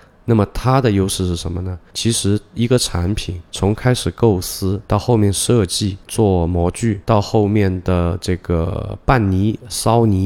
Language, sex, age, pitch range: Chinese, male, 20-39, 90-110 Hz